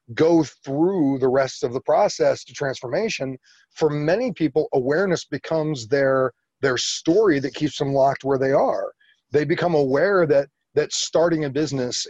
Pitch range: 135-170 Hz